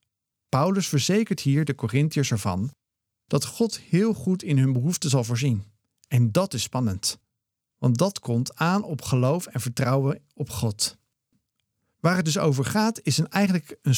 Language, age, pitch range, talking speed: Dutch, 50-69, 115-160 Hz, 165 wpm